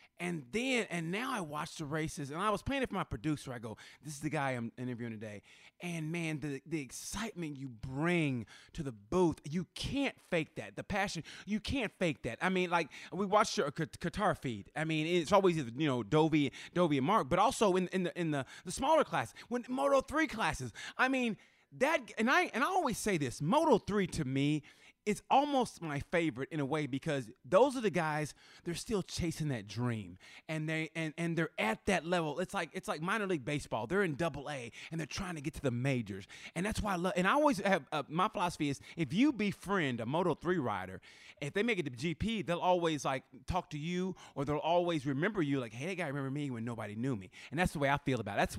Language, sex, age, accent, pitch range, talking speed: English, male, 20-39, American, 140-190 Hz, 235 wpm